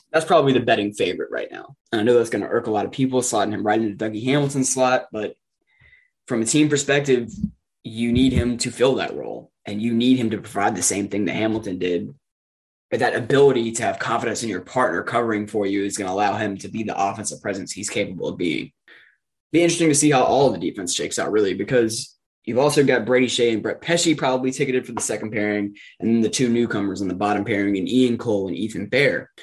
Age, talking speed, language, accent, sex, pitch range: 20-39, 240 wpm, English, American, male, 105-130 Hz